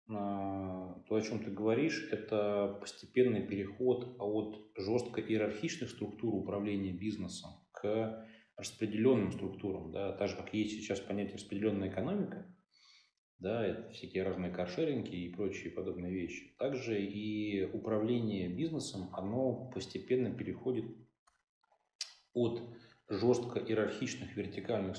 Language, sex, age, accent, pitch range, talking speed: Russian, male, 30-49, native, 95-115 Hz, 110 wpm